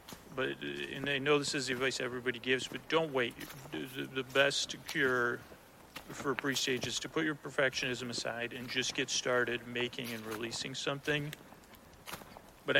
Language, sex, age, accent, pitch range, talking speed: English, male, 40-59, American, 125-140 Hz, 155 wpm